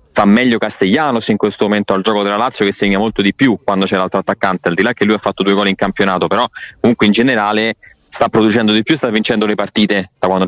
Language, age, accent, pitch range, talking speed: Italian, 20-39, native, 95-110 Hz, 250 wpm